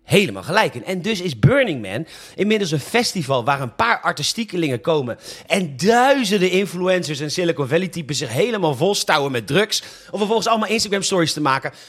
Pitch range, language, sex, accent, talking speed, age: 150-195 Hz, Dutch, male, Dutch, 165 wpm, 40-59